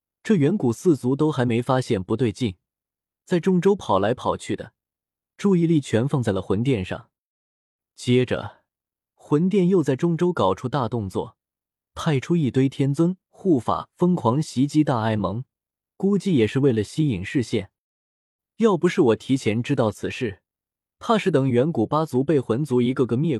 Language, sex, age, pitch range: Chinese, male, 20-39, 110-160 Hz